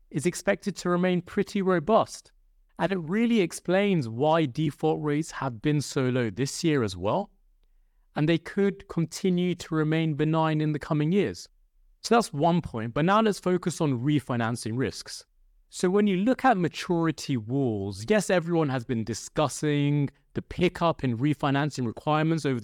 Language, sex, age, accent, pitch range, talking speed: English, male, 30-49, British, 135-185 Hz, 160 wpm